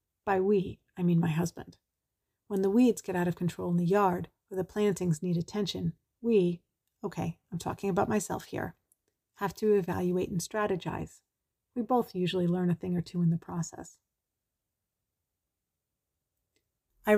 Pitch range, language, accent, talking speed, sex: 175-205 Hz, English, American, 155 wpm, female